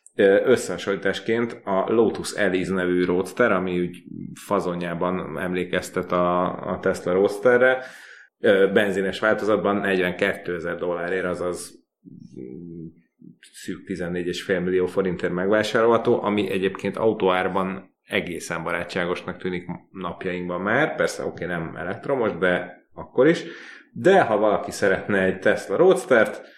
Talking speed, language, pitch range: 105 wpm, Hungarian, 90-100 Hz